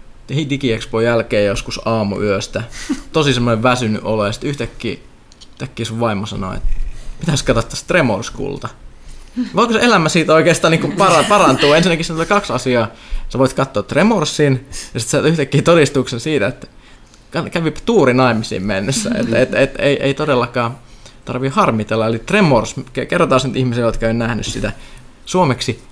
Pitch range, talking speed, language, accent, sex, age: 115-145 Hz, 140 wpm, Finnish, native, male, 20-39